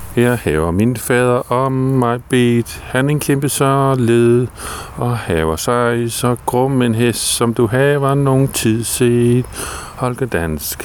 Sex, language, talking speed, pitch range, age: male, Danish, 155 wpm, 110-125 Hz, 50-69